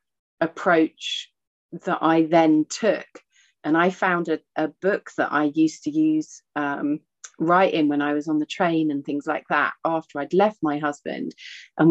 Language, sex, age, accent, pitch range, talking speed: English, female, 30-49, British, 160-195 Hz, 170 wpm